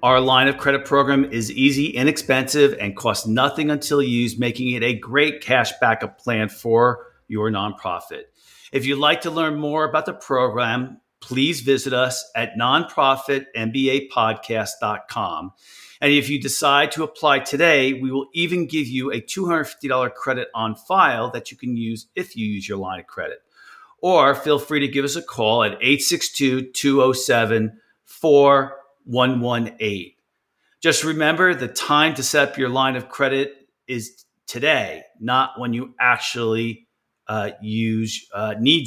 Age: 40-59